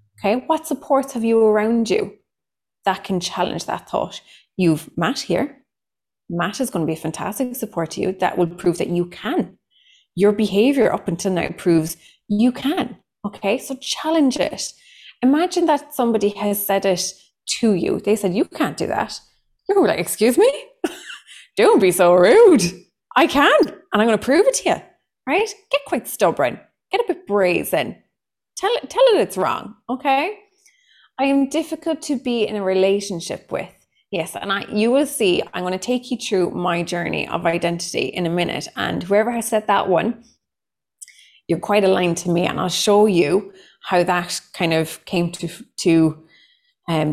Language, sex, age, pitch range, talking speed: English, female, 20-39, 175-275 Hz, 180 wpm